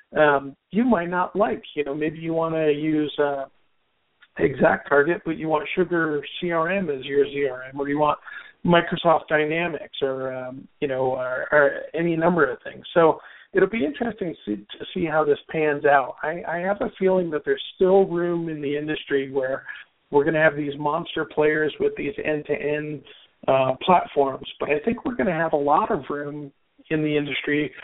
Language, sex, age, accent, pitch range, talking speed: English, male, 50-69, American, 140-170 Hz, 180 wpm